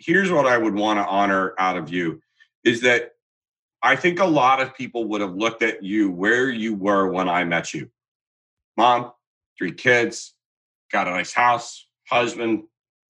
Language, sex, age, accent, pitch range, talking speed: English, male, 40-59, American, 110-140 Hz, 175 wpm